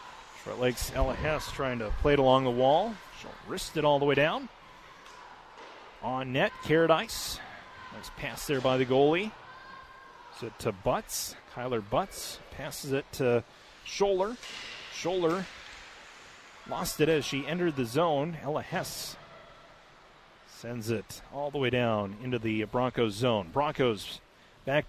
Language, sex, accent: English, male, American